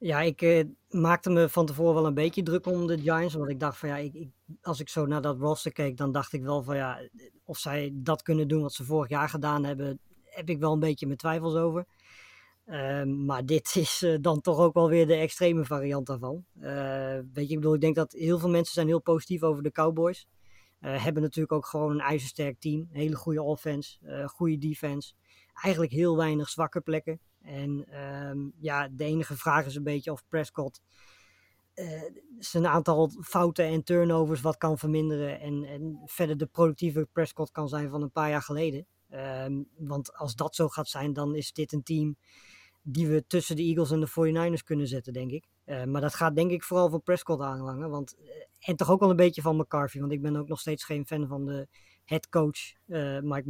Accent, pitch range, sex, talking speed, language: Dutch, 145-165 Hz, female, 215 wpm, Dutch